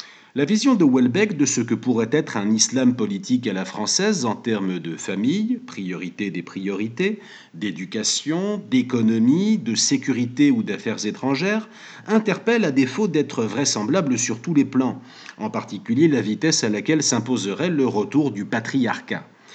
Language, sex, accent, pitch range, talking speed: French, male, French, 115-170 Hz, 150 wpm